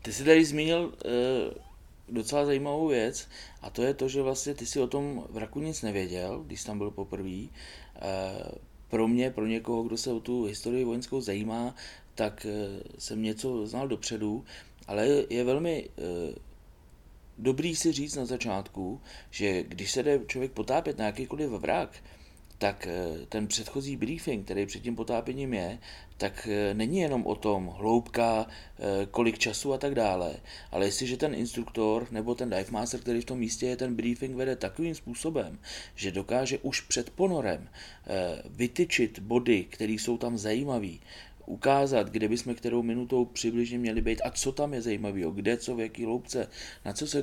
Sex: male